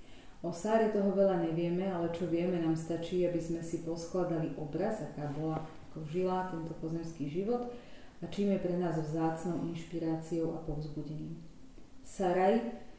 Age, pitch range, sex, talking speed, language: 30-49, 160-180 Hz, female, 150 wpm, Slovak